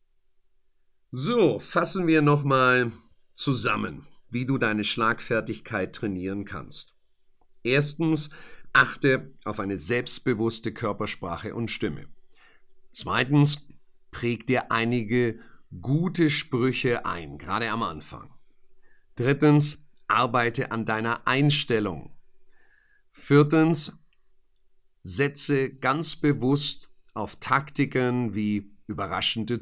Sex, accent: male, German